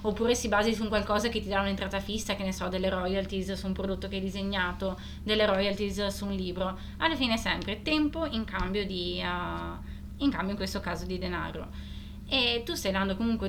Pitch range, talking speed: 185-240 Hz, 210 wpm